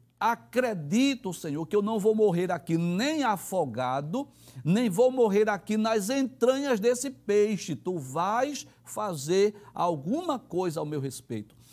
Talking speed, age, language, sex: 135 wpm, 60-79, Portuguese, male